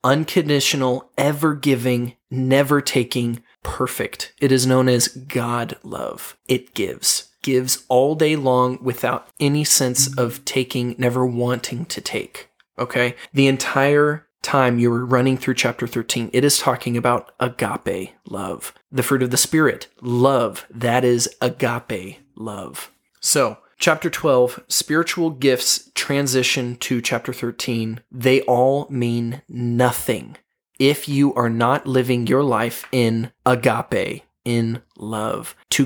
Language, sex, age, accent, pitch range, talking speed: English, male, 20-39, American, 120-140 Hz, 130 wpm